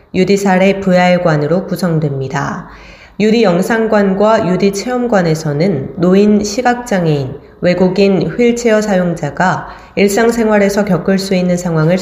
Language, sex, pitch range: Korean, female, 165-205 Hz